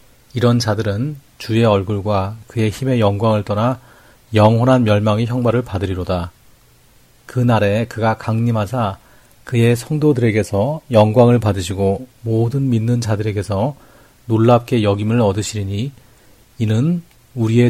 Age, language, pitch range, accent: 40-59, Korean, 105-125 Hz, native